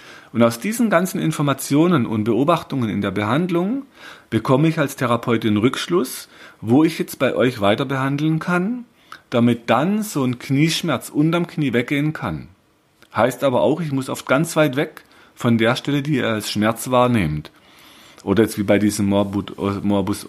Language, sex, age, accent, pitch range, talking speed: German, male, 40-59, German, 100-135 Hz, 165 wpm